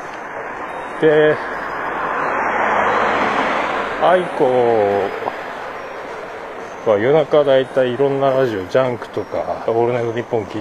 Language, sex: Japanese, male